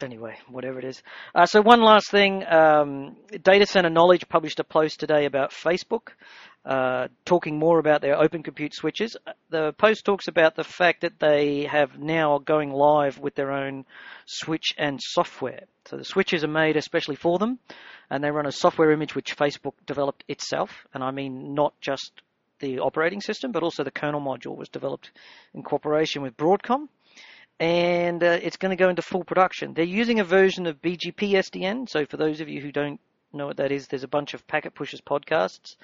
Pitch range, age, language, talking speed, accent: 140-170 Hz, 40-59, English, 195 wpm, Australian